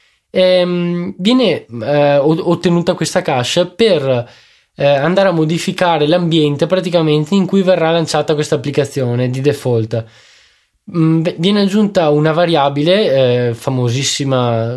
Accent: native